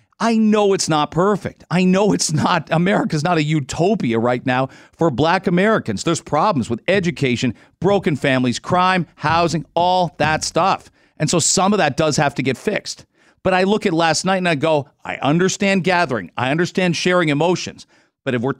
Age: 40-59